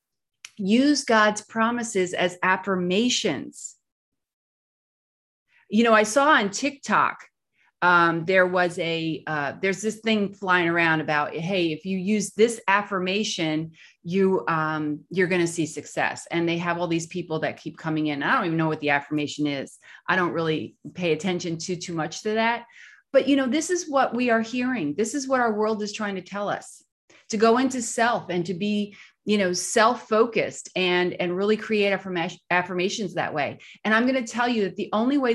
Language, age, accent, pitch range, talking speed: English, 30-49, American, 180-235 Hz, 185 wpm